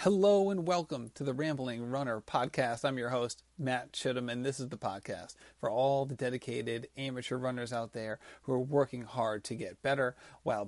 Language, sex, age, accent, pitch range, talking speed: English, male, 30-49, American, 120-140 Hz, 190 wpm